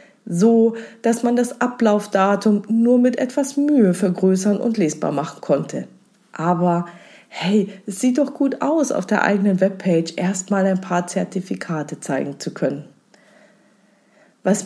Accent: German